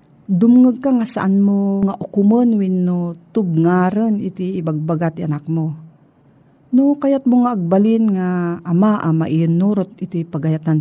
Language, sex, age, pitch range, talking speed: Filipino, female, 40-59, 160-230 Hz, 140 wpm